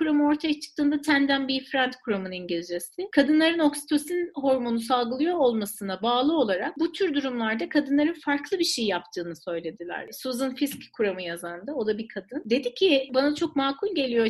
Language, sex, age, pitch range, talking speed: Turkish, female, 40-59, 230-310 Hz, 160 wpm